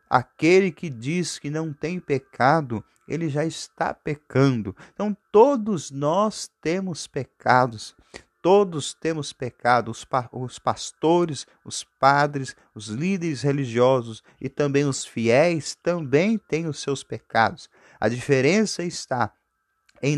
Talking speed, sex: 115 wpm, male